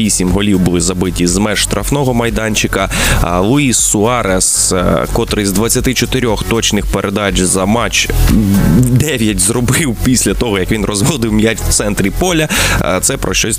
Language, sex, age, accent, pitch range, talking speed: Ukrainian, male, 20-39, native, 95-115 Hz, 135 wpm